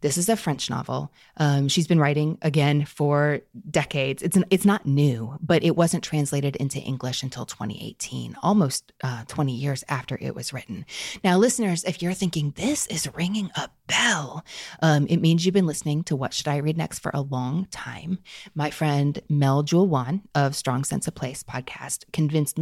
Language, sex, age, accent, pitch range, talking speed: English, female, 30-49, American, 140-170 Hz, 185 wpm